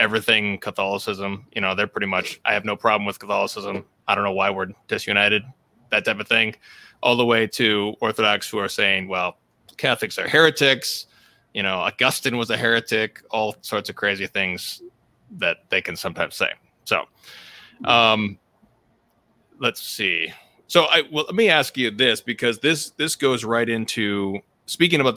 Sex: male